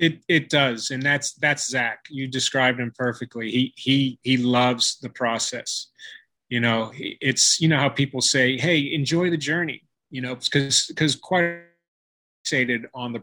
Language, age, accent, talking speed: English, 30-49, American, 170 wpm